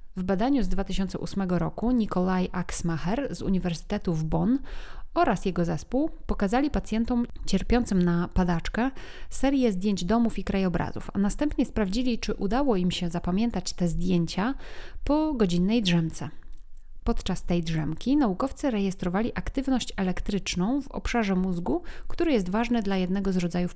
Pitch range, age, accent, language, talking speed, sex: 180-240 Hz, 30-49, native, Polish, 135 wpm, female